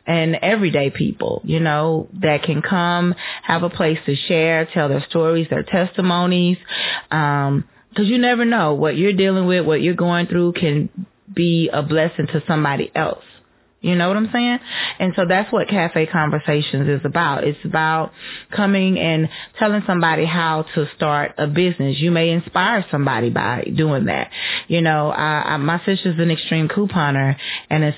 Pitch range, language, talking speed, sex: 155-195 Hz, English, 165 wpm, female